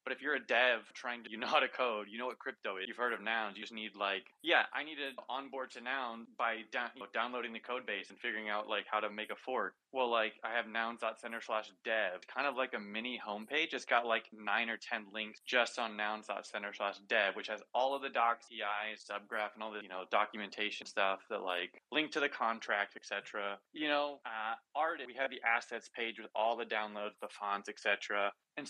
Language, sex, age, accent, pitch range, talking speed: English, male, 20-39, American, 105-130 Hz, 230 wpm